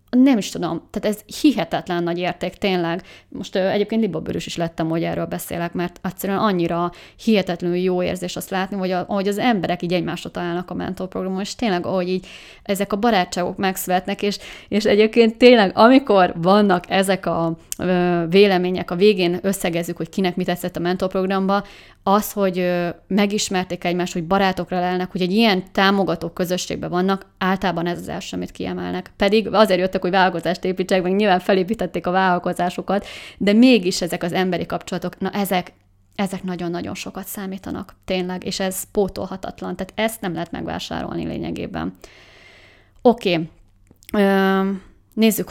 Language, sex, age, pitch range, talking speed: Hungarian, female, 20-39, 175-200 Hz, 155 wpm